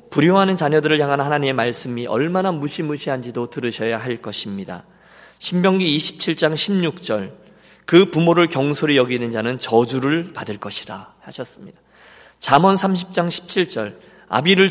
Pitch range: 120-180 Hz